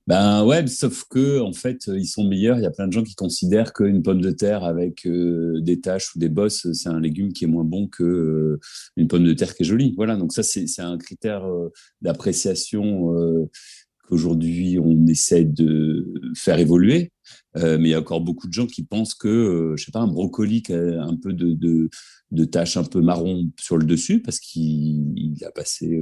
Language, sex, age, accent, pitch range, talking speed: French, male, 40-59, French, 80-95 Hz, 210 wpm